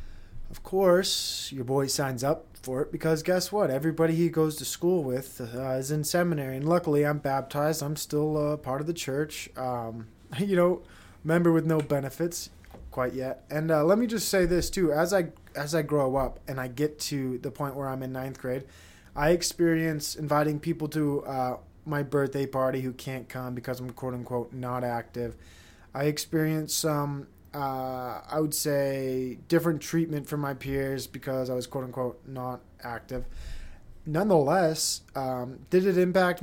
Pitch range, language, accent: 125-155 Hz, English, American